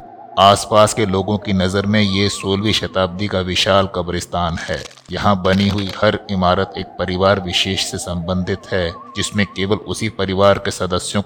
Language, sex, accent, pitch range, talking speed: Hindi, male, native, 95-105 Hz, 160 wpm